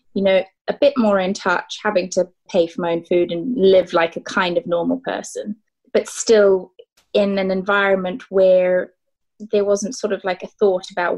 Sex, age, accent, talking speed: female, 20-39, British, 195 wpm